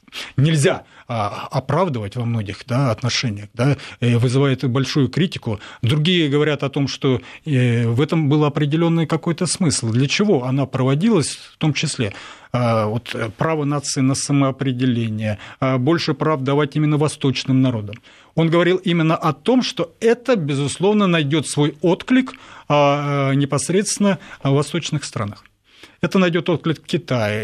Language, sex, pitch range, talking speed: Russian, male, 125-165 Hz, 120 wpm